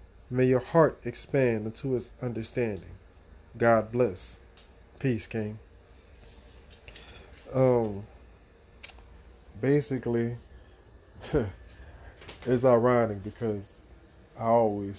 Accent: American